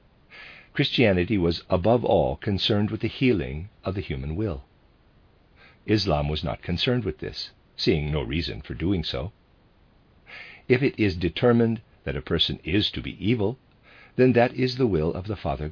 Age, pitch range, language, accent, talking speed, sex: 50-69, 85-115 Hz, English, American, 165 wpm, male